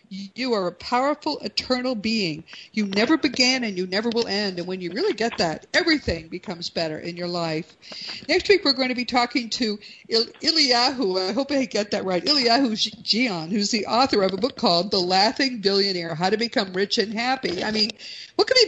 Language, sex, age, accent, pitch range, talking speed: English, female, 50-69, American, 195-255 Hz, 205 wpm